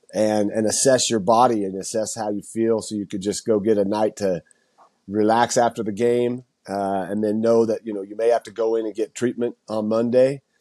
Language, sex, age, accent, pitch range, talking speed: English, male, 40-59, American, 105-120 Hz, 230 wpm